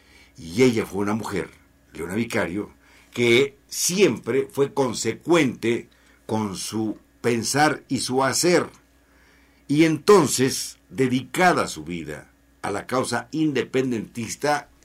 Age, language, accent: 60-79, Spanish, Mexican